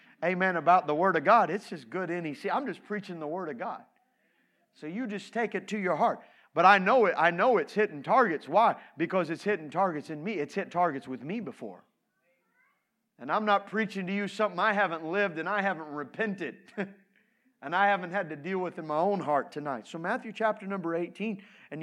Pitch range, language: 180-230 Hz, English